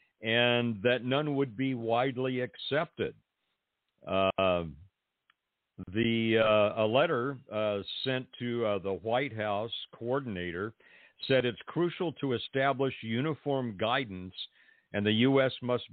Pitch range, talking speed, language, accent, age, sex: 100-130 Hz, 115 wpm, English, American, 50-69, male